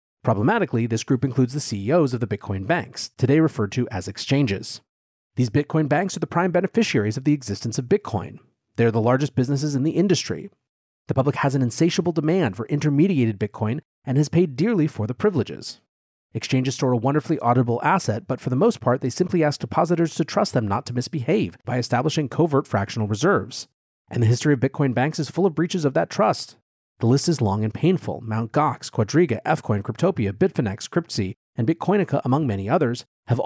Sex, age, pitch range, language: male, 30-49, 115-160 Hz, English